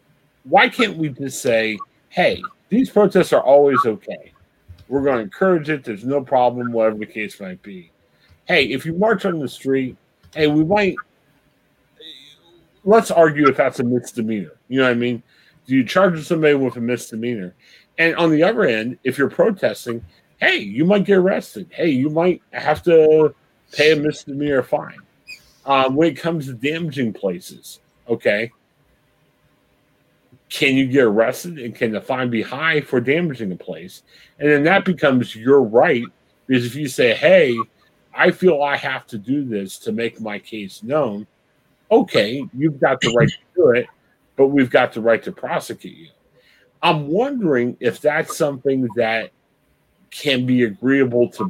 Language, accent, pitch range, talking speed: English, American, 120-160 Hz, 170 wpm